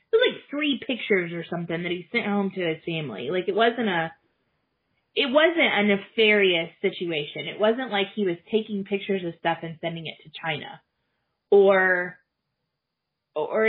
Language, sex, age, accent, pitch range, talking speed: English, female, 20-39, American, 175-235 Hz, 160 wpm